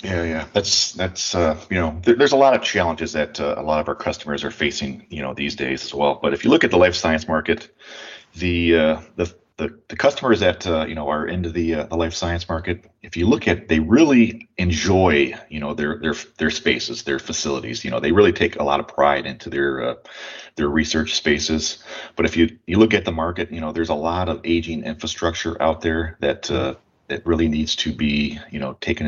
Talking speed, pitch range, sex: 235 wpm, 80-95 Hz, male